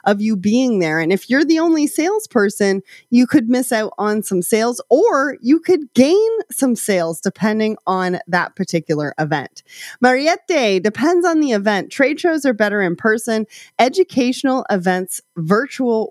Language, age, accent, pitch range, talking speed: English, 30-49, American, 185-255 Hz, 155 wpm